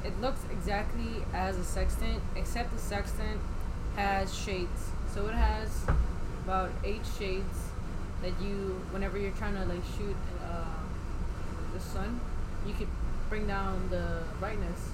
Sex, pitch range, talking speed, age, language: female, 85-95 Hz, 135 wpm, 10-29, English